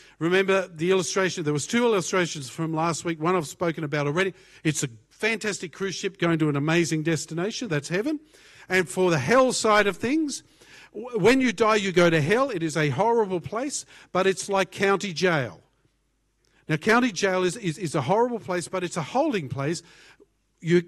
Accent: Australian